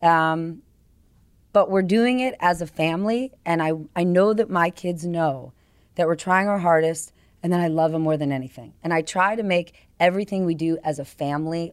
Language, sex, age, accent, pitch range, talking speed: English, female, 30-49, American, 165-220 Hz, 205 wpm